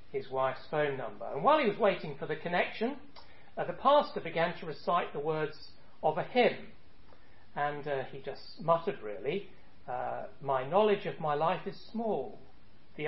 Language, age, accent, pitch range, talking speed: English, 40-59, British, 140-205 Hz, 175 wpm